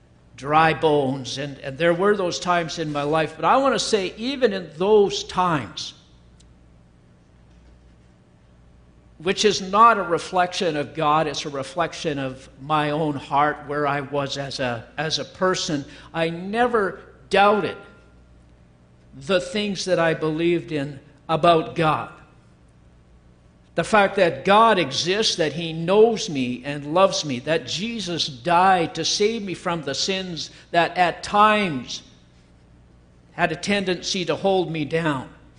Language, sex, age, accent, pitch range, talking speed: English, male, 60-79, American, 130-185 Hz, 140 wpm